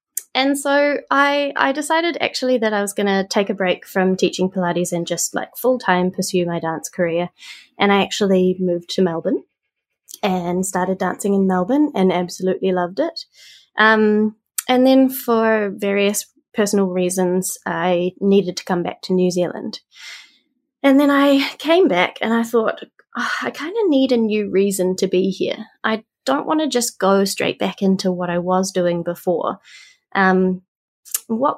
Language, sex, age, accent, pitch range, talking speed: English, female, 20-39, Australian, 185-255 Hz, 170 wpm